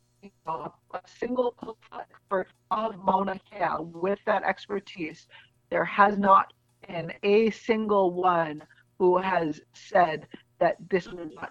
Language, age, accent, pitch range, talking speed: English, 40-59, American, 165-210 Hz, 115 wpm